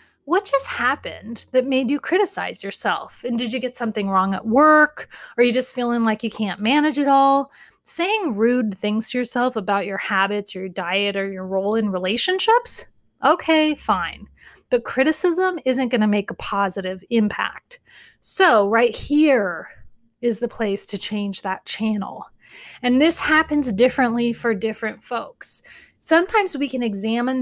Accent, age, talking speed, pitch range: American, 30-49, 160 wpm, 210-290 Hz